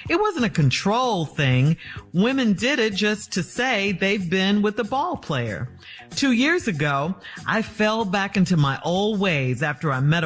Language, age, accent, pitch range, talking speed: English, 50-69, American, 150-235 Hz, 175 wpm